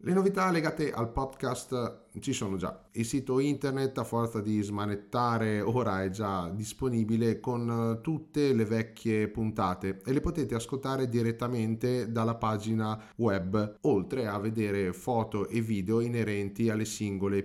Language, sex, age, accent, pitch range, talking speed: Italian, male, 30-49, native, 100-125 Hz, 140 wpm